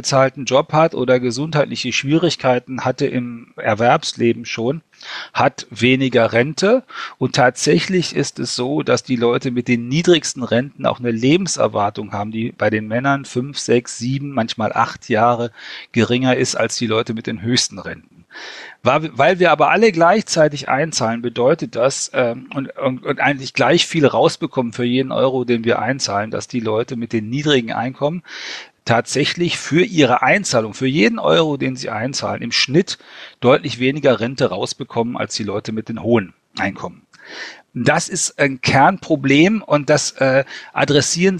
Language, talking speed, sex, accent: German, 155 wpm, male, German